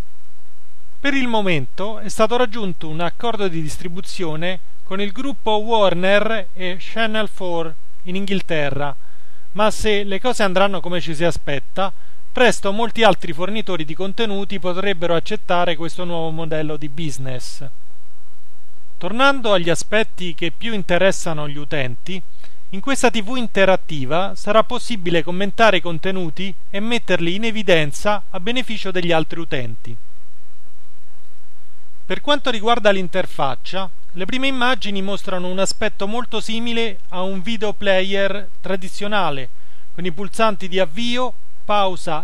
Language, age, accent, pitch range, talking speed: Italian, 30-49, native, 160-215 Hz, 125 wpm